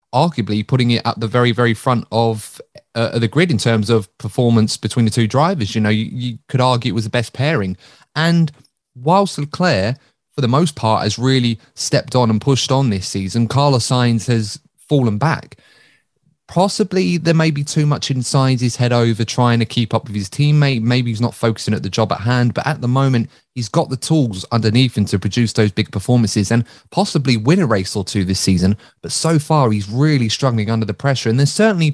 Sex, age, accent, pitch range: male, 30-49, British, 110-140 Hz